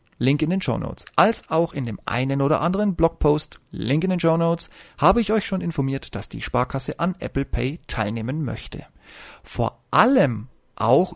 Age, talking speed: 30-49, 185 wpm